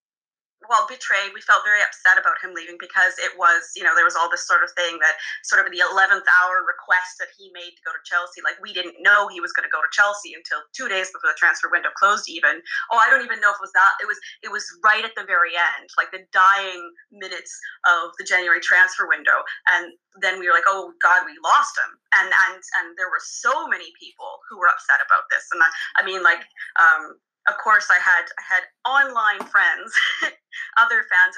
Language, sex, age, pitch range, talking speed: English, female, 20-39, 185-240 Hz, 230 wpm